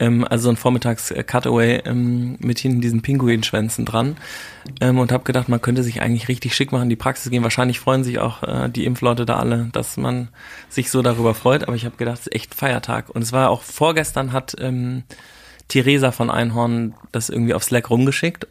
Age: 30-49